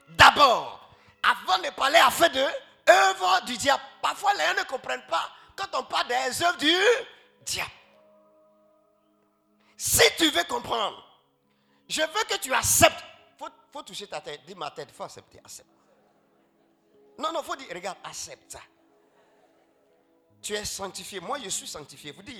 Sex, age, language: male, 50-69, French